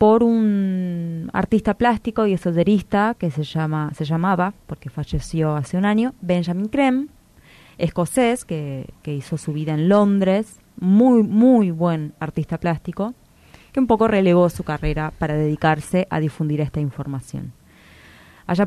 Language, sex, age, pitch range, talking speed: Spanish, female, 20-39, 155-200 Hz, 140 wpm